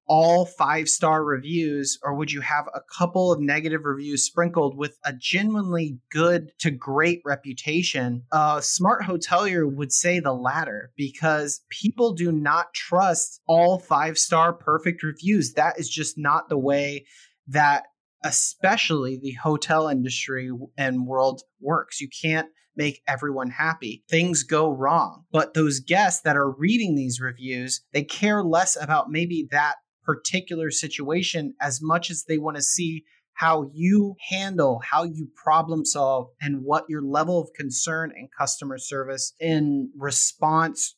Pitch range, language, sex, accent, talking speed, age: 140-170 Hz, English, male, American, 150 wpm, 30-49